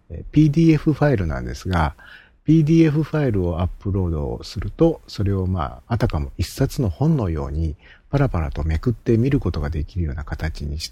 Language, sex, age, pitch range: Japanese, male, 50-69, 80-115 Hz